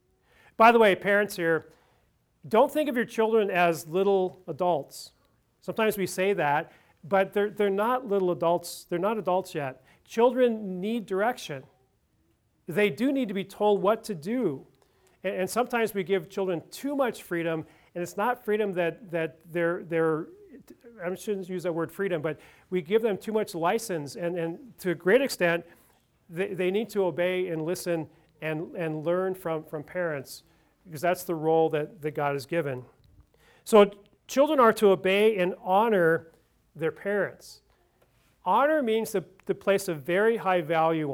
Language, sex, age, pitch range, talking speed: English, male, 40-59, 165-205 Hz, 170 wpm